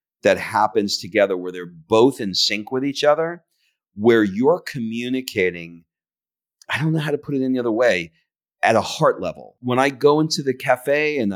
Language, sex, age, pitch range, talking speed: English, male, 40-59, 95-130 Hz, 185 wpm